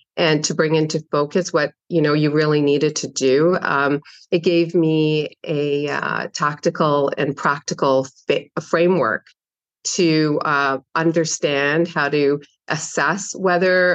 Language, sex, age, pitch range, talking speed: English, female, 40-59, 145-165 Hz, 130 wpm